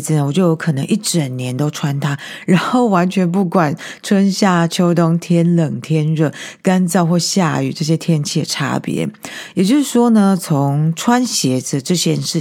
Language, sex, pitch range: Chinese, female, 150-190 Hz